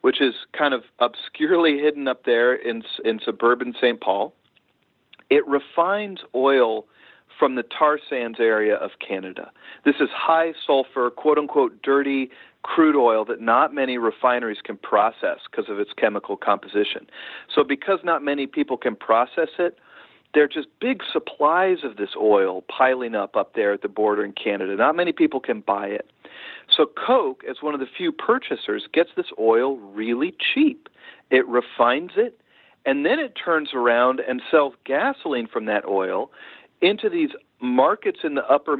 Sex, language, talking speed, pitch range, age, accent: male, English, 165 wpm, 125-190 Hz, 40-59, American